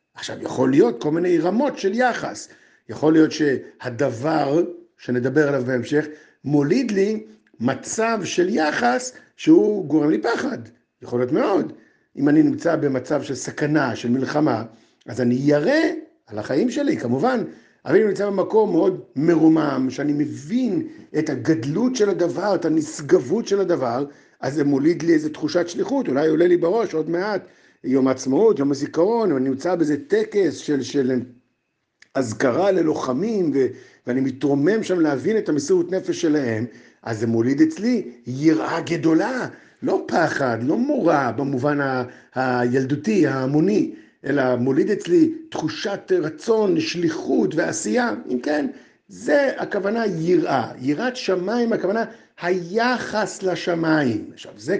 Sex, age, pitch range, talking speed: male, 50-69, 140-225 Hz, 135 wpm